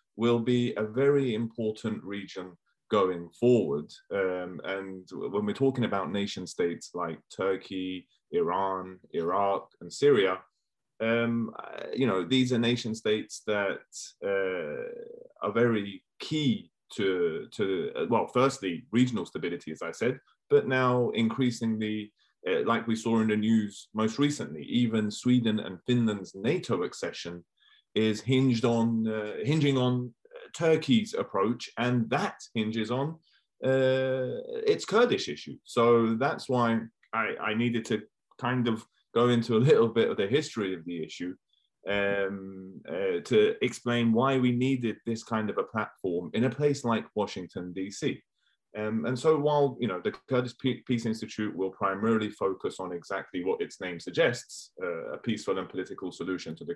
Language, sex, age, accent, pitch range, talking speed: English, male, 30-49, British, 105-135 Hz, 150 wpm